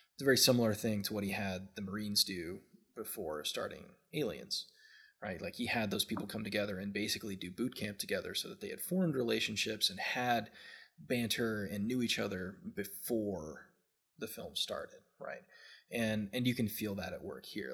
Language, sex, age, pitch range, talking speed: English, male, 20-39, 100-120 Hz, 190 wpm